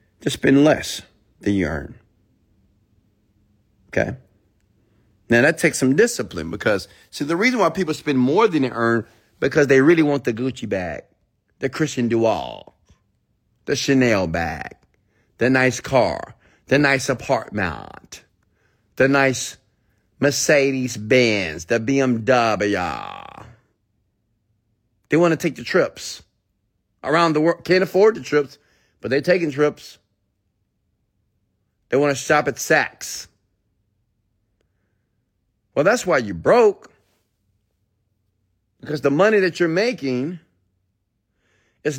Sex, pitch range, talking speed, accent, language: male, 100-140 Hz, 120 wpm, American, English